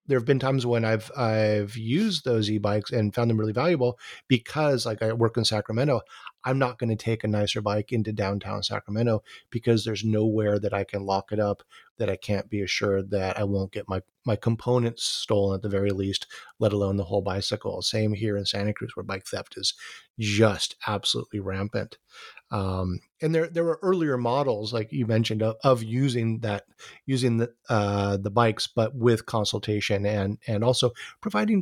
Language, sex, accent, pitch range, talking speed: English, male, American, 105-135 Hz, 190 wpm